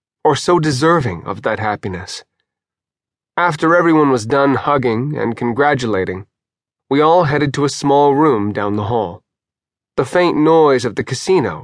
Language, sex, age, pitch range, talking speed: English, male, 30-49, 120-150 Hz, 150 wpm